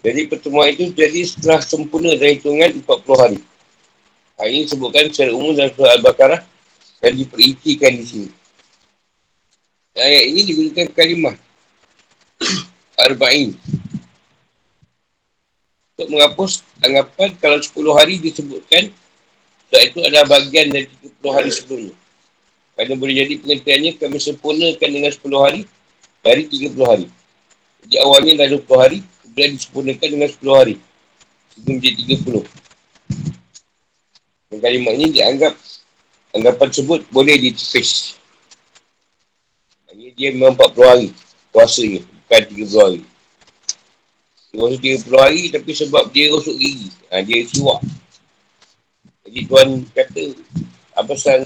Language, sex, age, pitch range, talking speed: Malay, male, 50-69, 135-160 Hz, 120 wpm